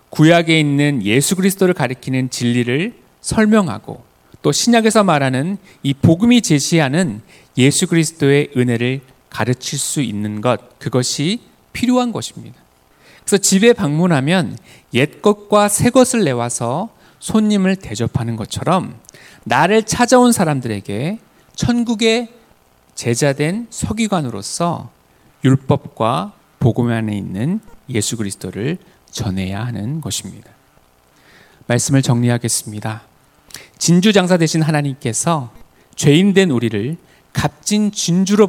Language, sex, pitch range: Korean, male, 120-190 Hz